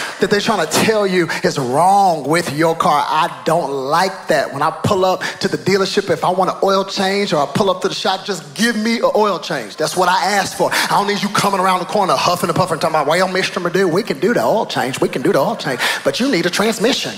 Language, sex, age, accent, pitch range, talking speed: English, male, 30-49, American, 185-265 Hz, 280 wpm